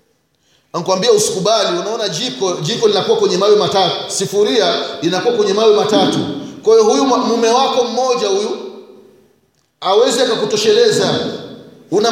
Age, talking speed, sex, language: 30-49, 115 wpm, male, Swahili